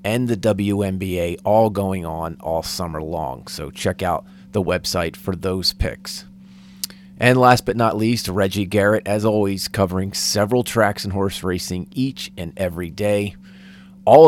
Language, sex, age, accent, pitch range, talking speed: English, male, 30-49, American, 90-115 Hz, 155 wpm